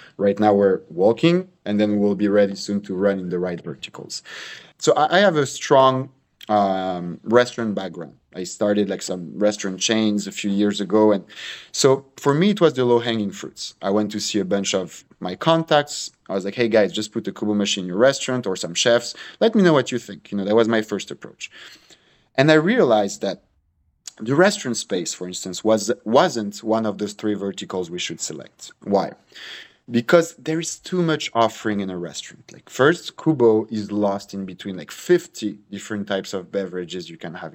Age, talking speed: 30-49, 200 wpm